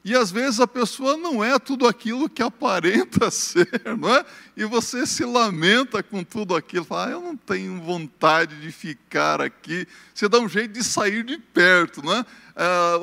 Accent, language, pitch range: Brazilian, Portuguese, 175-245 Hz